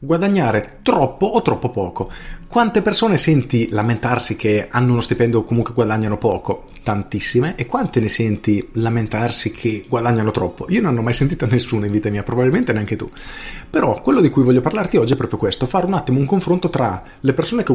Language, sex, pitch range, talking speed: Italian, male, 105-150 Hz, 195 wpm